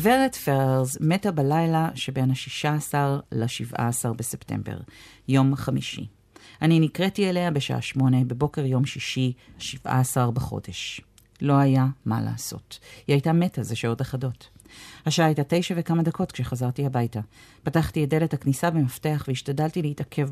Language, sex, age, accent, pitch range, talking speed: Hebrew, female, 40-59, native, 120-160 Hz, 130 wpm